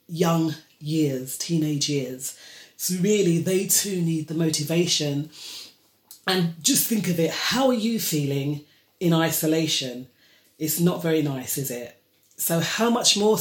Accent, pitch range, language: British, 150-185 Hz, English